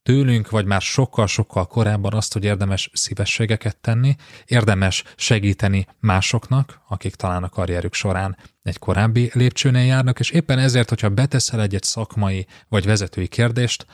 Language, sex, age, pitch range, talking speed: Hungarian, male, 30-49, 95-115 Hz, 140 wpm